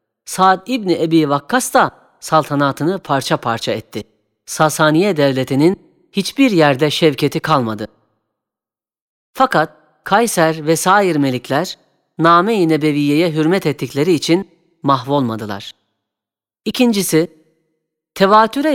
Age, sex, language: 40-59, female, Turkish